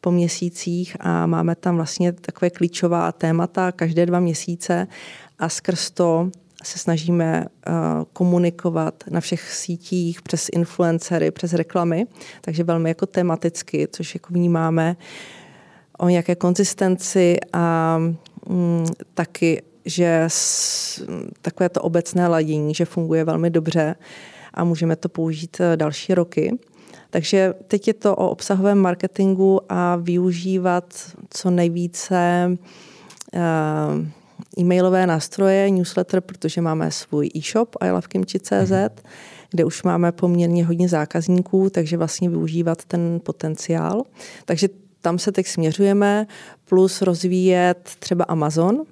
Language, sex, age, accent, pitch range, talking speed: Czech, female, 30-49, native, 165-185 Hz, 115 wpm